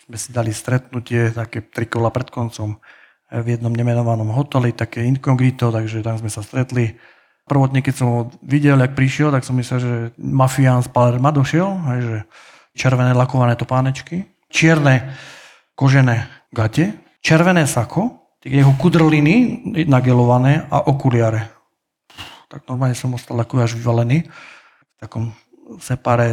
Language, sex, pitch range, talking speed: Slovak, male, 120-150 Hz, 140 wpm